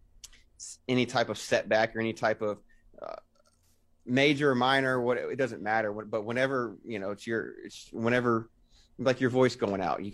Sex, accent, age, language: male, American, 30-49, English